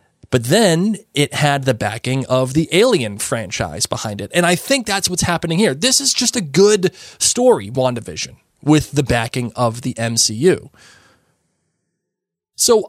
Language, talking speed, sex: English, 155 wpm, male